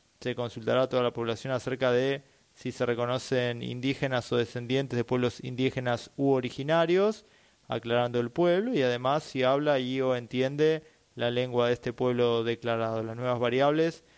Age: 20-39